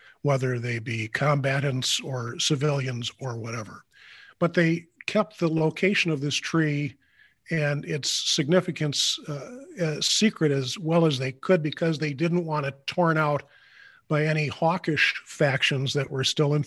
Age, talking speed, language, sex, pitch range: 50-69, 150 wpm, English, male, 135-170 Hz